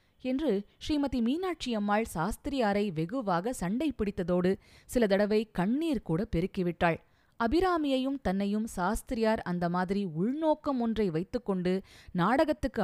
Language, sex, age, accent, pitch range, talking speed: Tamil, female, 20-39, native, 175-255 Hz, 100 wpm